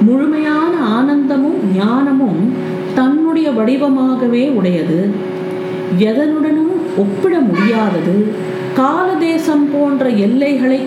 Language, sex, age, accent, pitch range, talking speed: Tamil, female, 50-69, native, 200-285 Hz, 70 wpm